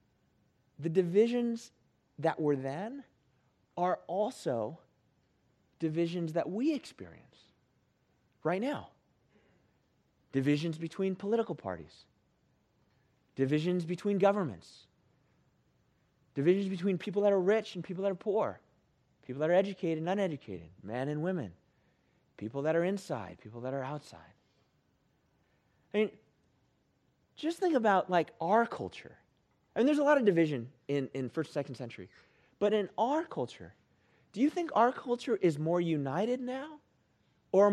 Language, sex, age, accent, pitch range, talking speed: English, male, 30-49, American, 140-205 Hz, 130 wpm